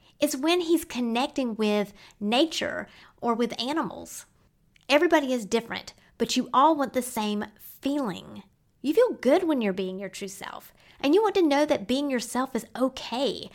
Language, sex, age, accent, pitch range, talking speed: English, female, 30-49, American, 230-300 Hz, 170 wpm